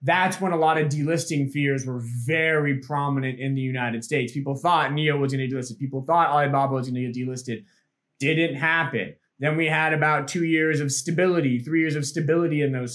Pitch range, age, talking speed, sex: 135-165 Hz, 20-39, 210 wpm, male